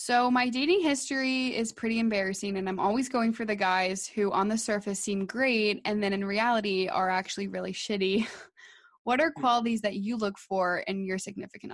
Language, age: English, 20-39